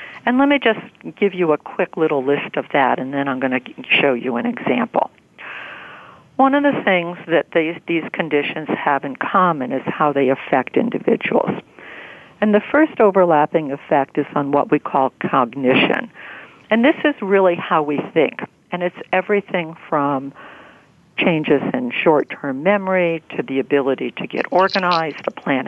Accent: American